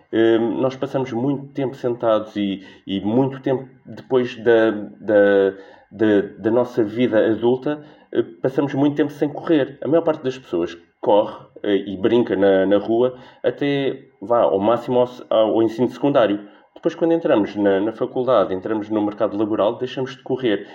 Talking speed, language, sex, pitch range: 160 wpm, Portuguese, male, 115-160 Hz